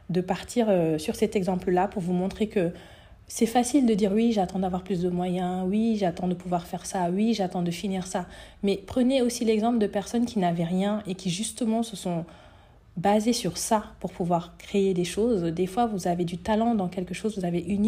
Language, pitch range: French, 180-215 Hz